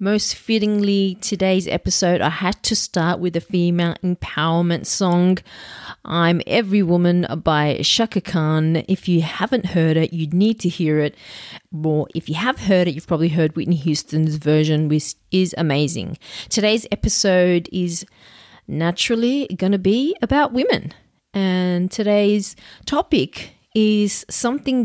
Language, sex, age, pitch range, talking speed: English, female, 40-59, 165-205 Hz, 145 wpm